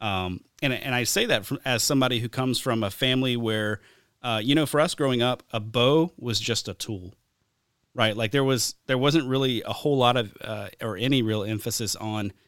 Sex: male